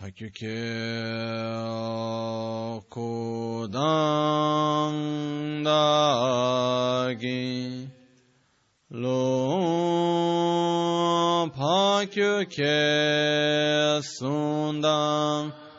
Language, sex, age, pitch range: Italian, male, 30-49, 115-150 Hz